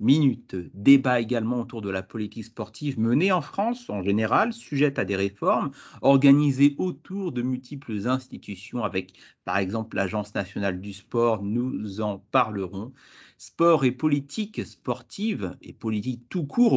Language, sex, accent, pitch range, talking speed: French, male, French, 105-145 Hz, 145 wpm